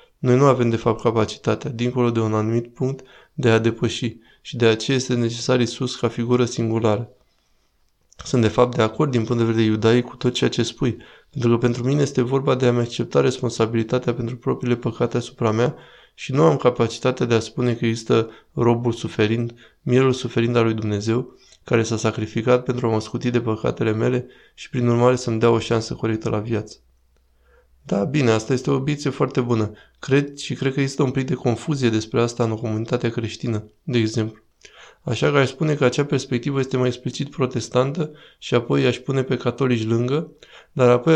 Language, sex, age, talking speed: Romanian, male, 20-39, 195 wpm